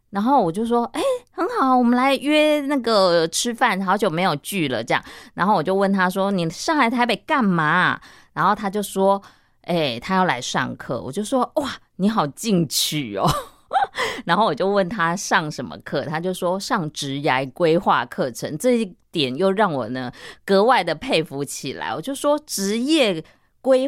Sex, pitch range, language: female, 150-215 Hz, Chinese